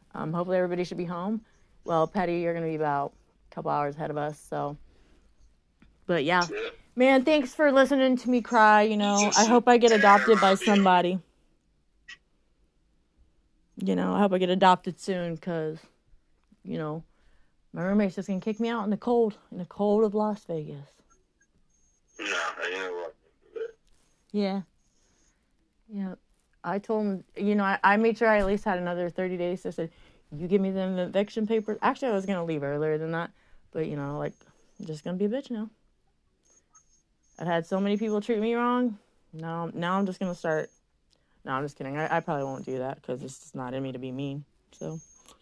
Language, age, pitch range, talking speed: English, 30-49, 165-220 Hz, 200 wpm